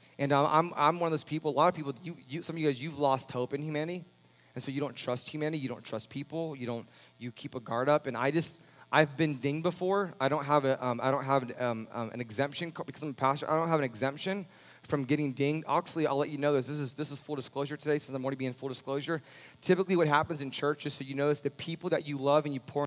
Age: 20-39